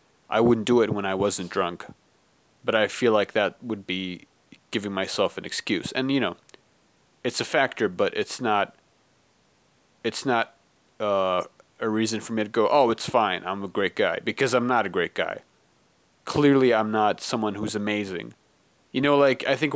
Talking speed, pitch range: 185 wpm, 105-125 Hz